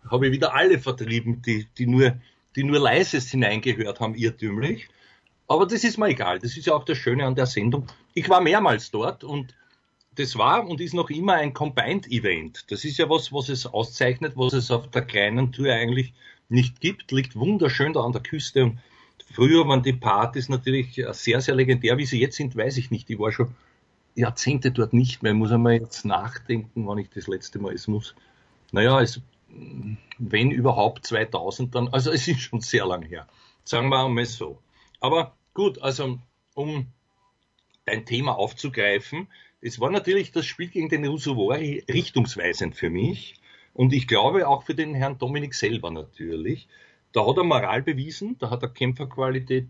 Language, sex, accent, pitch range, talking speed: German, male, Austrian, 115-140 Hz, 185 wpm